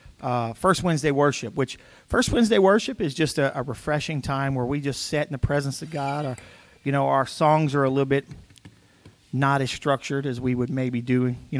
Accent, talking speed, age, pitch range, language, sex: American, 210 wpm, 40-59, 130-160 Hz, English, male